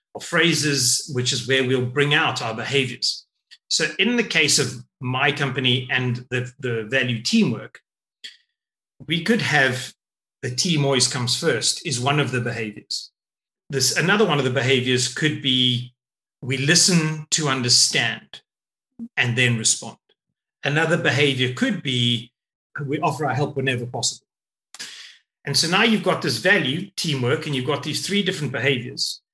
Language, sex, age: English, male, 30-49